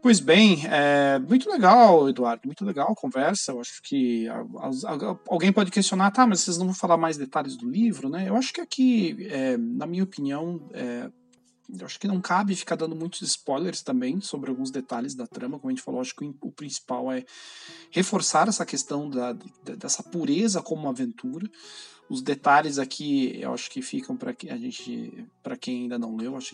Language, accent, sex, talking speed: Portuguese, Brazilian, male, 210 wpm